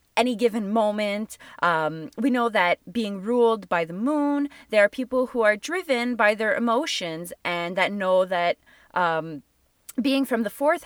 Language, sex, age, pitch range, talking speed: English, female, 20-39, 175-255 Hz, 165 wpm